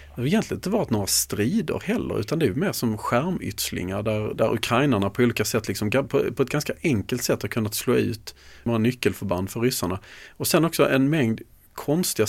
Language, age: Swedish, 30-49